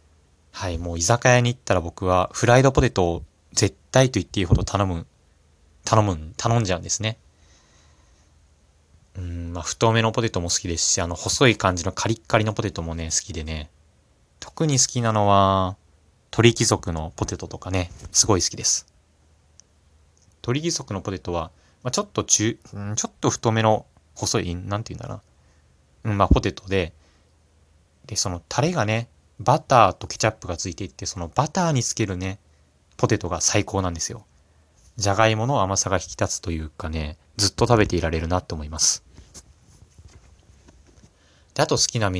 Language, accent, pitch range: Japanese, native, 80-110 Hz